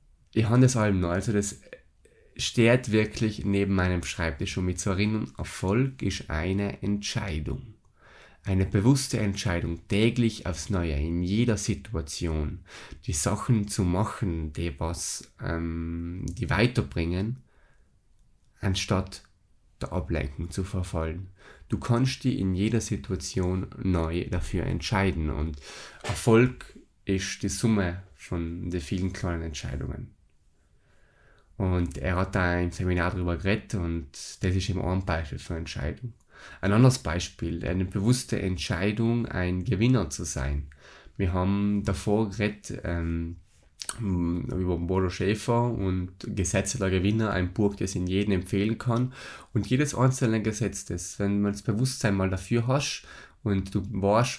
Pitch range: 90-110 Hz